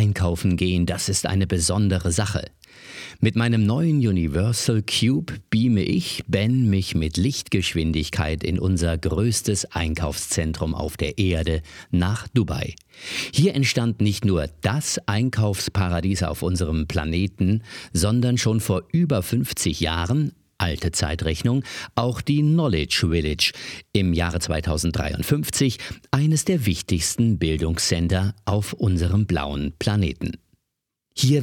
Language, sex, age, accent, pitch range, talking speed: German, male, 50-69, German, 85-115 Hz, 115 wpm